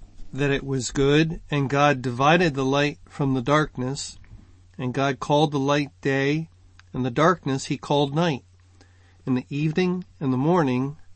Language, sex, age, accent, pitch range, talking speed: English, male, 50-69, American, 100-150 Hz, 160 wpm